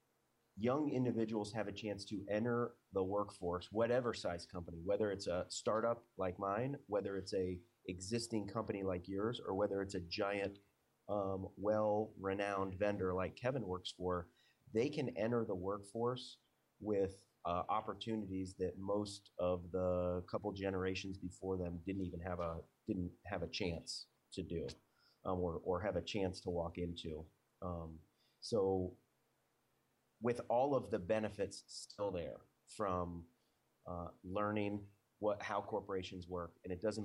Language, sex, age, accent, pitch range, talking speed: English, male, 30-49, American, 90-105 Hz, 150 wpm